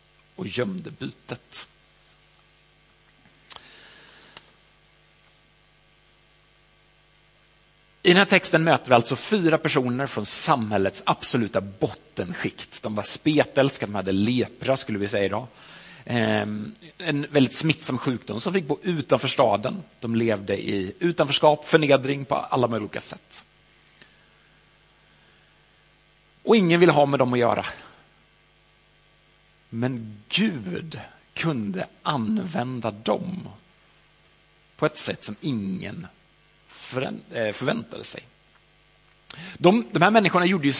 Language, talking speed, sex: Swedish, 105 wpm, male